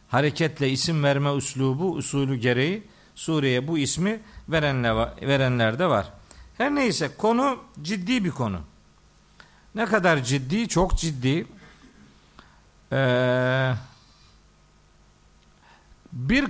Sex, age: male, 50-69